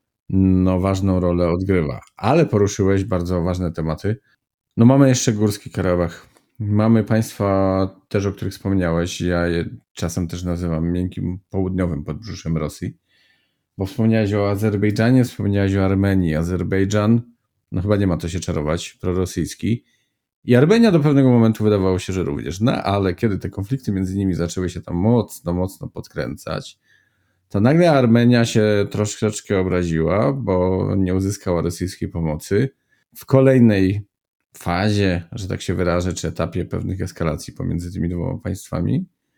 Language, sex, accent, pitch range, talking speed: Polish, male, native, 90-105 Hz, 140 wpm